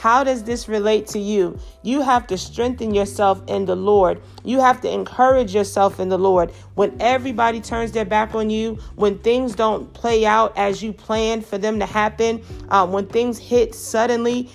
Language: English